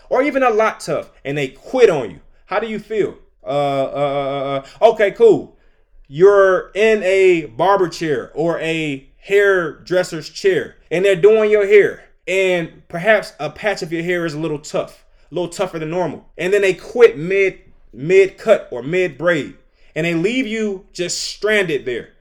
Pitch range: 170-220 Hz